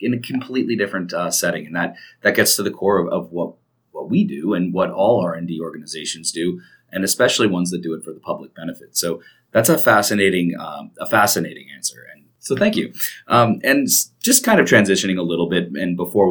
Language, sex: English, male